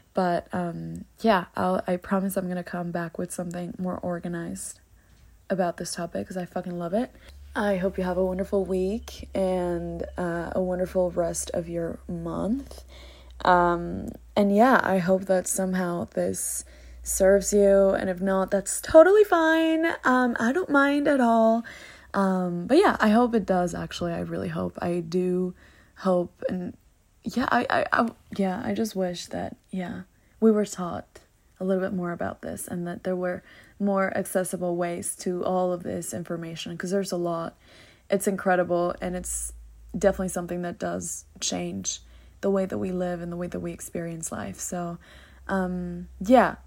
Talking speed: 170 wpm